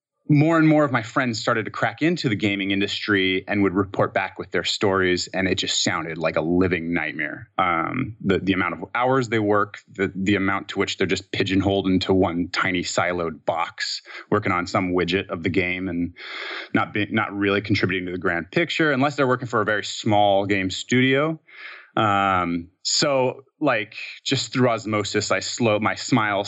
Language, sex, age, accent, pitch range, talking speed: English, male, 30-49, American, 95-125 Hz, 195 wpm